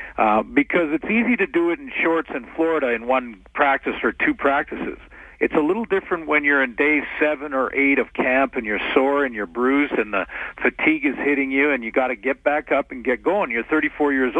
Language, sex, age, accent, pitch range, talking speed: English, male, 50-69, American, 130-170 Hz, 230 wpm